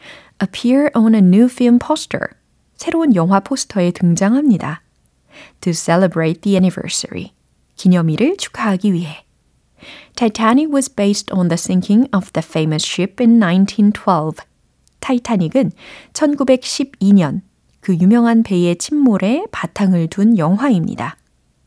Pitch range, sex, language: 175-240 Hz, female, Korean